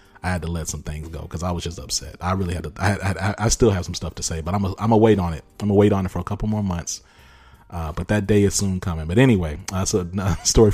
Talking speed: 305 wpm